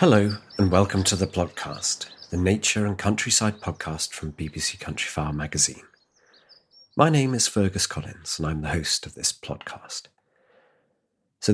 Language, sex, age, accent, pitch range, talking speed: English, male, 40-59, British, 80-100 Hz, 145 wpm